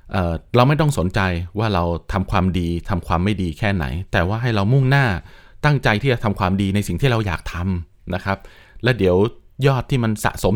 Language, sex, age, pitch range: Thai, male, 20-39, 90-120 Hz